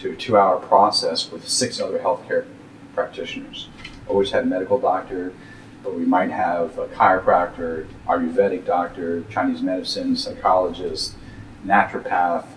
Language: English